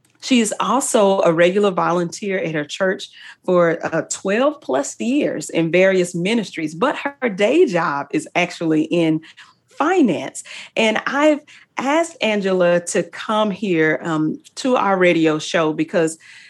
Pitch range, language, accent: 165-200 Hz, English, American